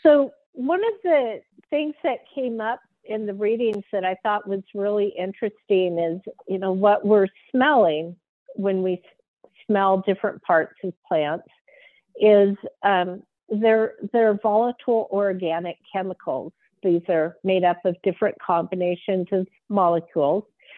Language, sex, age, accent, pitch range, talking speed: English, female, 50-69, American, 180-220 Hz, 135 wpm